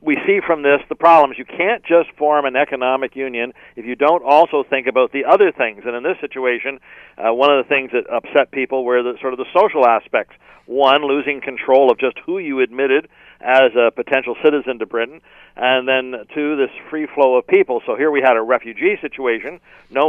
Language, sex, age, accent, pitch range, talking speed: English, male, 50-69, American, 125-155 Hz, 210 wpm